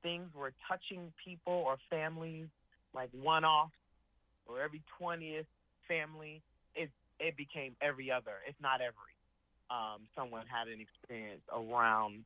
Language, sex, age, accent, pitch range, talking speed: English, male, 30-49, American, 115-150 Hz, 125 wpm